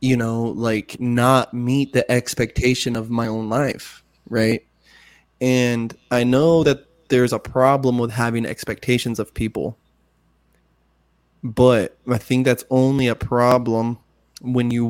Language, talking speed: English, 135 wpm